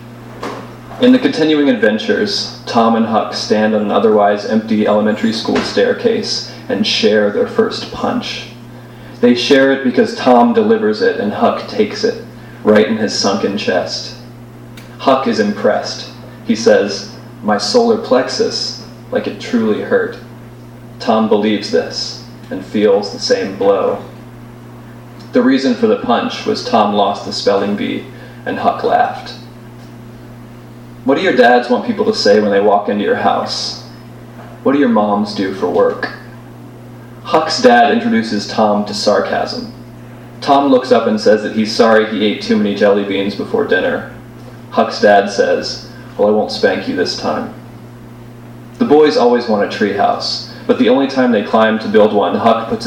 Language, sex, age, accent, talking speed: English, male, 30-49, American, 160 wpm